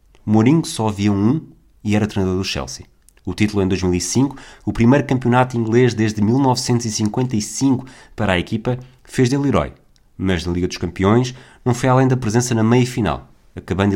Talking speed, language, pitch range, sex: 165 wpm, Portuguese, 95-125 Hz, male